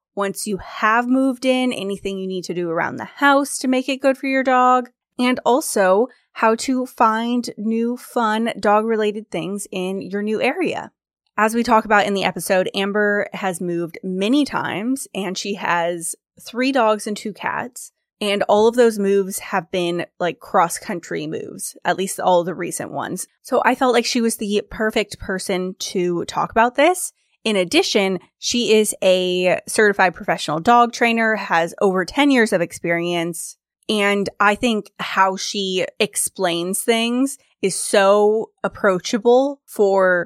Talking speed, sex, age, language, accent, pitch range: 160 wpm, female, 20-39, English, American, 185-230 Hz